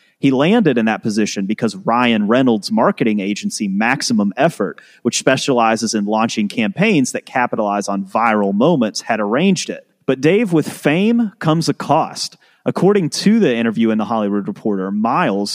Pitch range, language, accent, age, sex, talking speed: 115-165 Hz, English, American, 30-49, male, 160 wpm